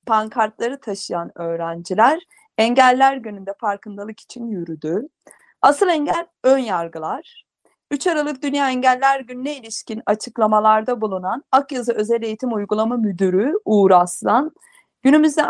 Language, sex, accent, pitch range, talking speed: Turkish, female, native, 210-270 Hz, 110 wpm